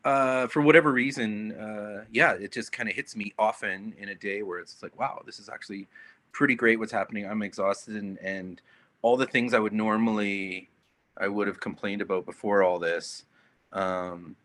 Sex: male